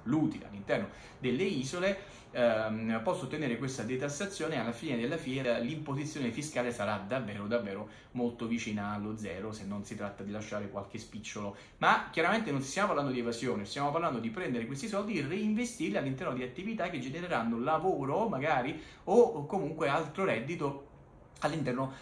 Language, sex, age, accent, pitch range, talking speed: Italian, male, 30-49, native, 105-130 Hz, 160 wpm